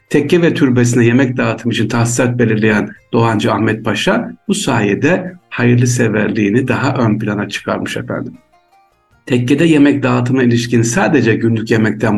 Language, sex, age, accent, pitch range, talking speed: Turkish, male, 60-79, native, 110-130 Hz, 135 wpm